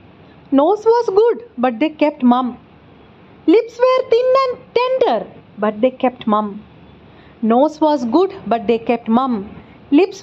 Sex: female